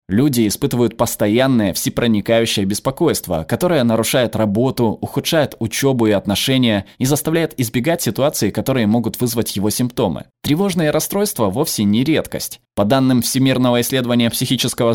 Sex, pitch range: male, 105-135 Hz